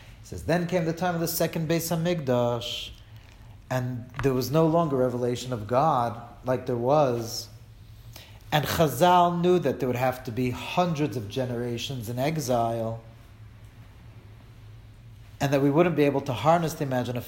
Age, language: 40-59, English